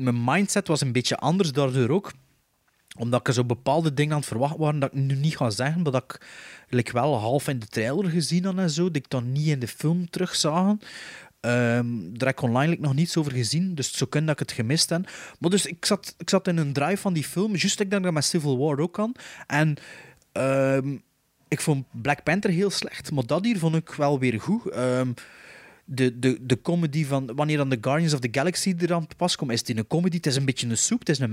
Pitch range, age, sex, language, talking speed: 125-165 Hz, 30-49, male, Dutch, 250 wpm